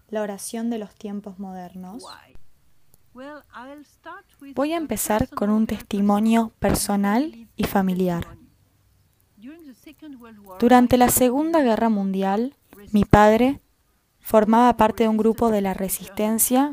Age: 10-29